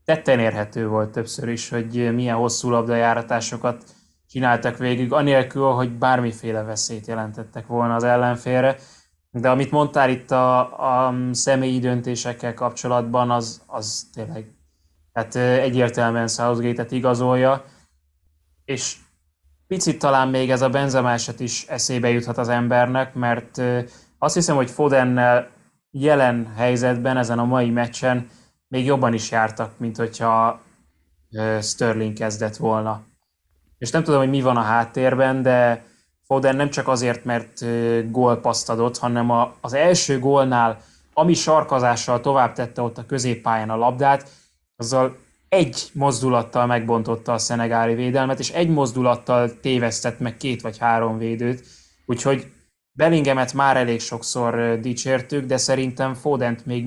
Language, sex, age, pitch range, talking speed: Hungarian, male, 20-39, 115-130 Hz, 130 wpm